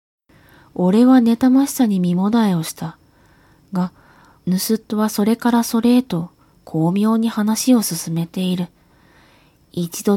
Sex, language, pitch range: female, Japanese, 170-210 Hz